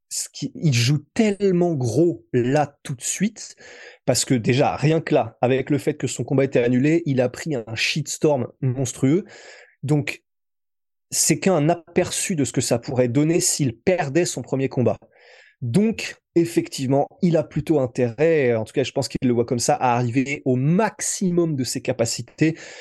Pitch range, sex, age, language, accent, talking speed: 120-150 Hz, male, 20-39, French, French, 175 wpm